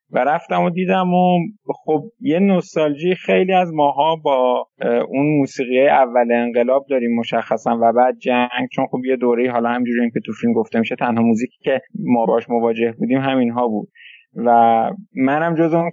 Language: Persian